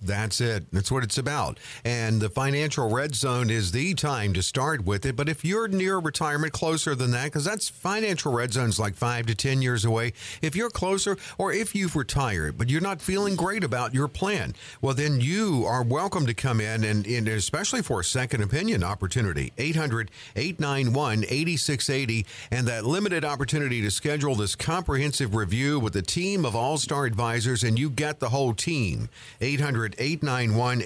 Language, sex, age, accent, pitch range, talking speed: English, male, 50-69, American, 115-150 Hz, 185 wpm